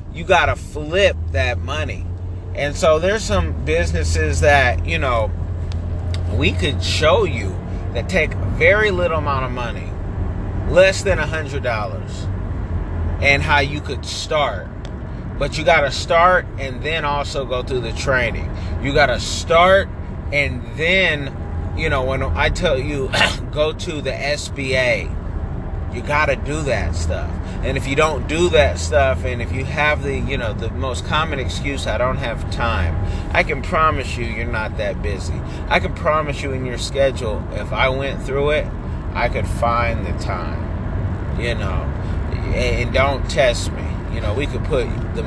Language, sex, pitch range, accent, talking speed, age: English, male, 85-115 Hz, American, 165 wpm, 30-49